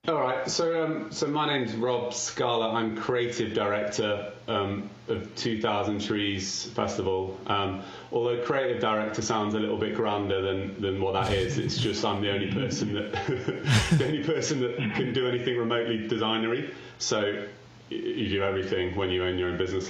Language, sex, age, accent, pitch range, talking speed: English, male, 30-49, British, 100-120 Hz, 175 wpm